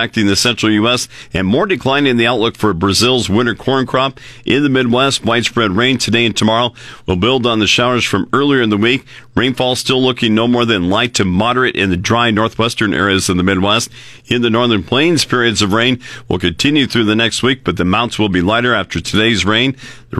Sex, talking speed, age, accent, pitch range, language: male, 215 wpm, 50-69, American, 100-125 Hz, English